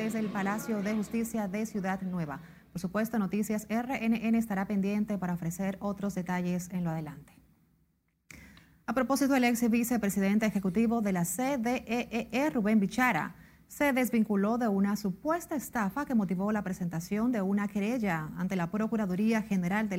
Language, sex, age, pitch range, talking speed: Spanish, female, 30-49, 190-225 Hz, 150 wpm